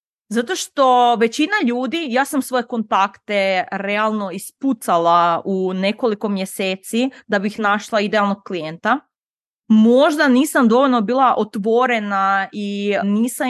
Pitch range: 195-255 Hz